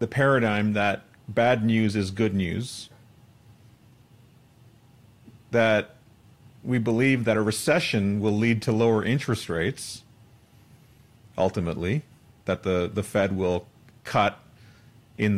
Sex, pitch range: male, 105-125 Hz